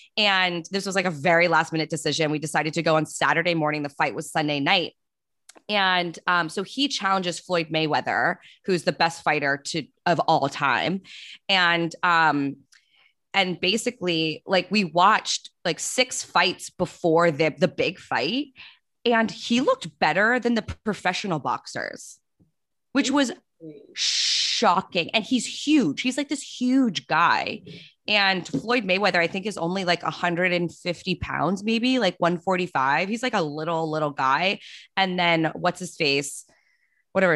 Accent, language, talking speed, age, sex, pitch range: American, English, 155 wpm, 20-39, female, 155-195 Hz